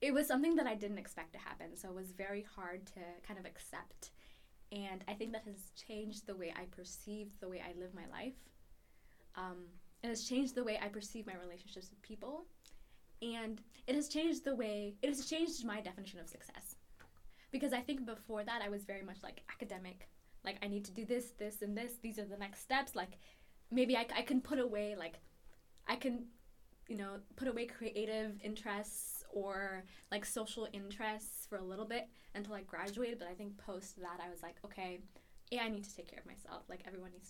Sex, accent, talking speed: female, American, 210 wpm